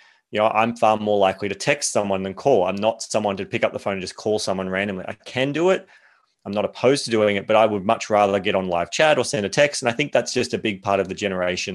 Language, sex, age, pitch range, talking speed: English, male, 30-49, 95-120 Hz, 295 wpm